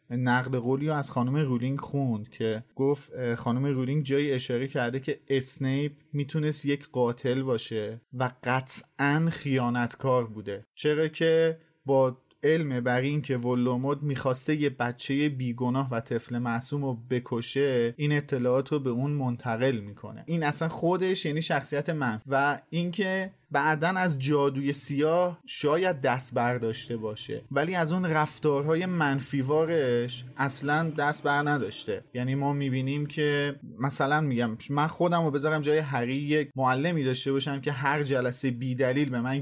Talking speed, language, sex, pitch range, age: 145 wpm, Persian, male, 125-150 Hz, 30-49